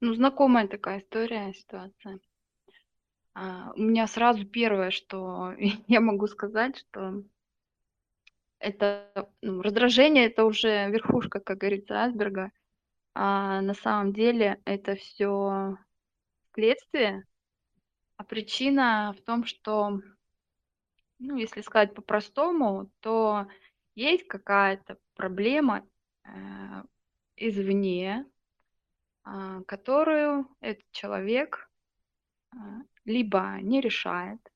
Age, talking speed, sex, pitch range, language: 20-39, 85 wpm, female, 195-235 Hz, Russian